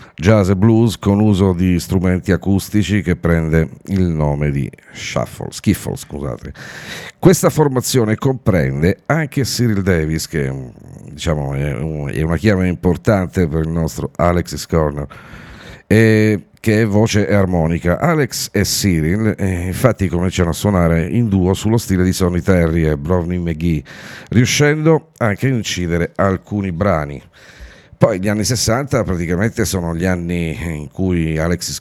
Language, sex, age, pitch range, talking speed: Italian, male, 50-69, 80-105 Hz, 135 wpm